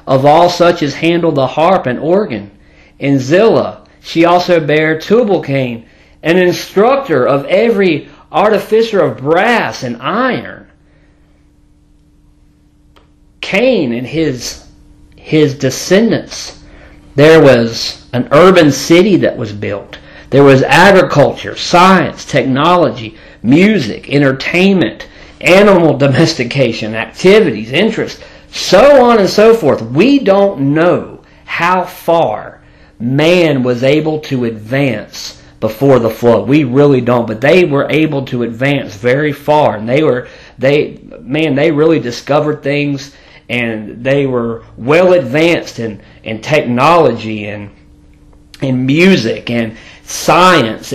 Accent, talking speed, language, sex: American, 115 wpm, Finnish, male